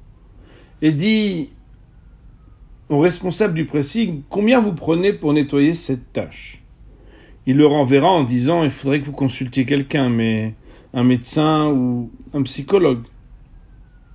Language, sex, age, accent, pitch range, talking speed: English, male, 50-69, French, 130-190 Hz, 125 wpm